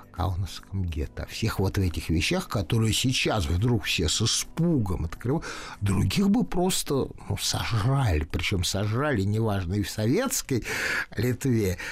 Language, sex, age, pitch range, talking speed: Russian, male, 60-79, 90-125 Hz, 140 wpm